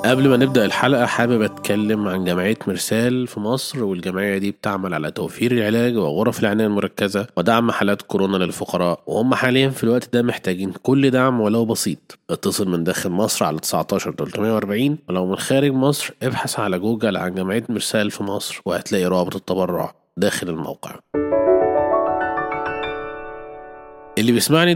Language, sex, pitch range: Arabic, male, 100-135 Hz